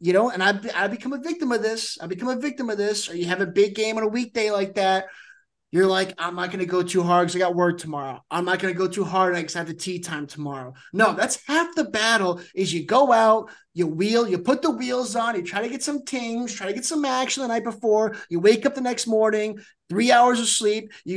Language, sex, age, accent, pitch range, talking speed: English, male, 30-49, American, 180-230 Hz, 270 wpm